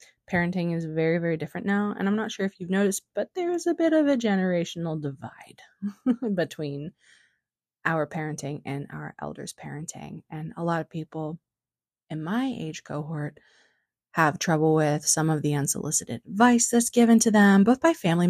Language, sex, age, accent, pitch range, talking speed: English, female, 20-39, American, 145-185 Hz, 170 wpm